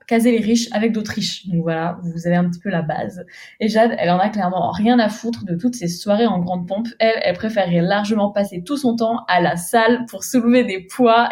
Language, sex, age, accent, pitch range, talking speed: French, female, 20-39, French, 195-245 Hz, 245 wpm